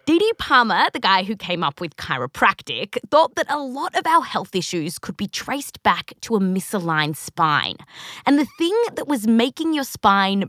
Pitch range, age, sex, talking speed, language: 185-290 Hz, 20-39, female, 190 wpm, English